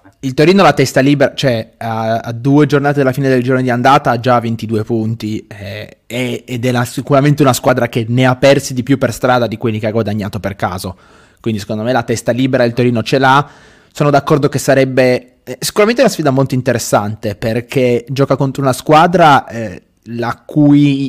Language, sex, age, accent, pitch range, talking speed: Italian, male, 20-39, native, 115-140 Hz, 200 wpm